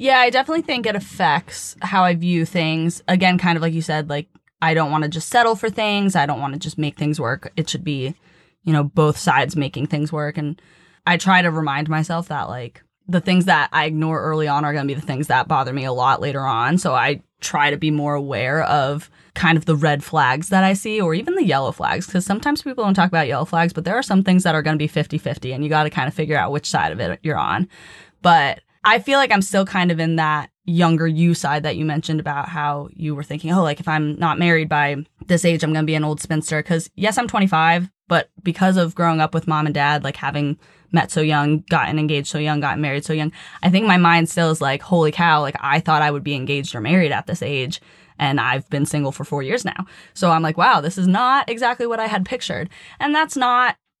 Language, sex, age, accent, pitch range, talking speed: English, female, 20-39, American, 150-180 Hz, 260 wpm